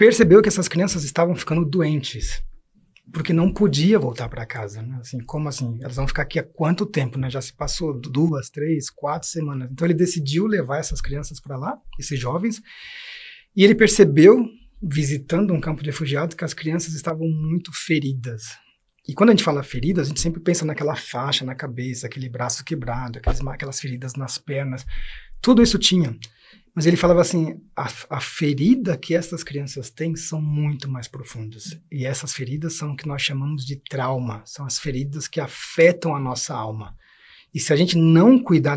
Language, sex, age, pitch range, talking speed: English, male, 30-49, 135-175 Hz, 185 wpm